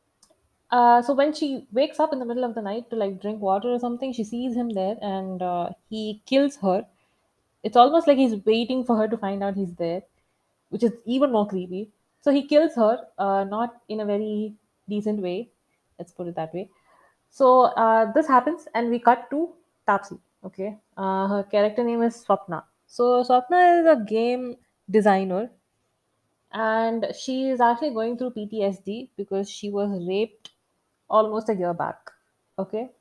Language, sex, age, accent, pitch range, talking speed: English, female, 20-39, Indian, 200-255 Hz, 180 wpm